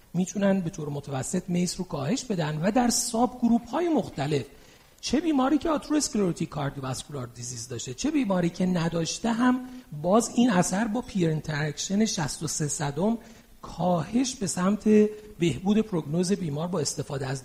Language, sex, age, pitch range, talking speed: Persian, male, 40-59, 165-225 Hz, 150 wpm